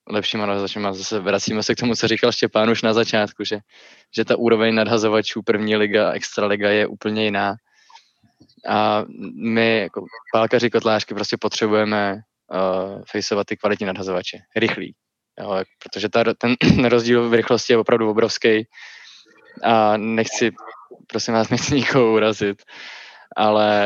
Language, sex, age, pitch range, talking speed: Czech, male, 20-39, 105-115 Hz, 140 wpm